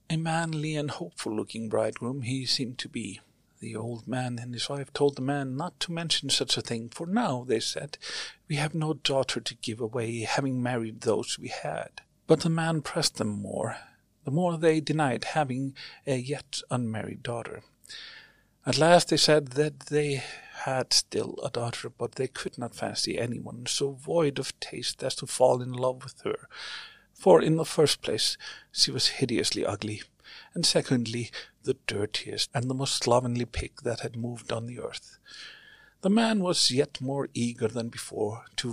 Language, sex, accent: English, male, Swedish